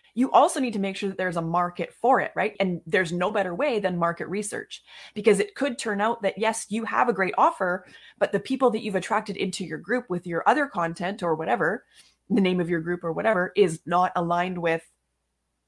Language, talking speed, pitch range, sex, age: English, 225 wpm, 170-215 Hz, female, 20-39